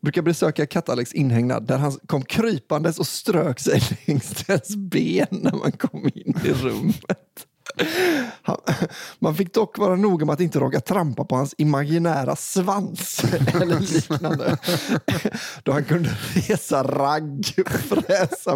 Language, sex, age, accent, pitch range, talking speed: Swedish, male, 30-49, native, 135-175 Hz, 135 wpm